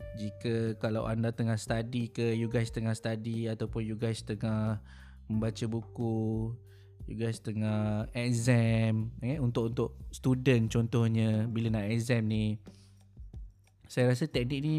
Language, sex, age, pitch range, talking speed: Malay, male, 20-39, 110-140 Hz, 135 wpm